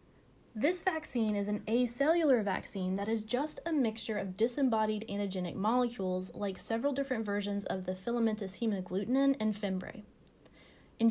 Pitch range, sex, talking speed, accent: 190-255 Hz, female, 140 wpm, American